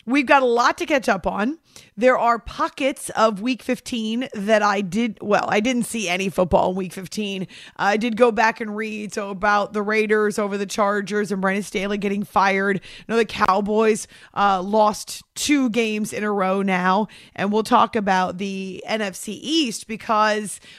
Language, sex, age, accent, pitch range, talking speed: English, female, 30-49, American, 205-255 Hz, 185 wpm